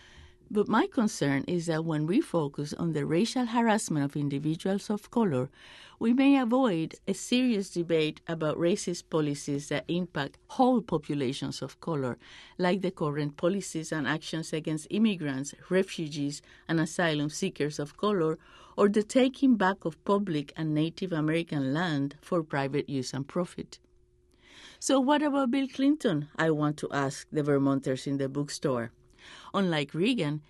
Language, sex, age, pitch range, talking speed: English, female, 50-69, 145-195 Hz, 150 wpm